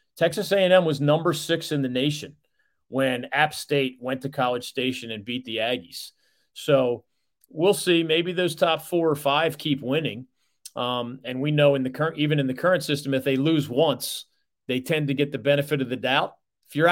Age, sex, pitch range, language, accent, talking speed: 40-59, male, 125-160 Hz, English, American, 200 wpm